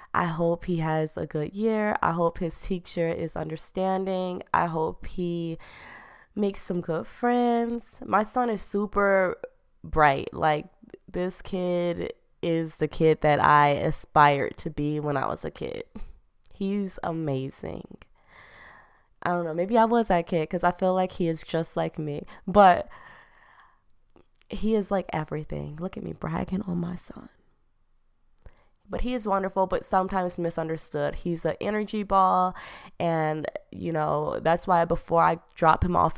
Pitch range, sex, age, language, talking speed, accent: 155-190 Hz, female, 20-39, English, 155 wpm, American